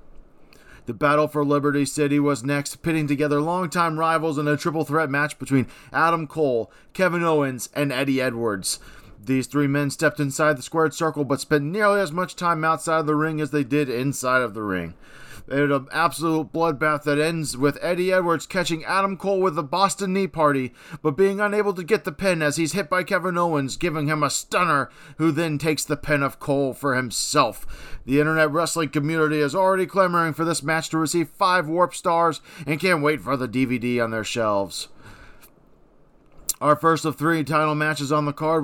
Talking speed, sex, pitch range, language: 195 wpm, male, 140-160 Hz, English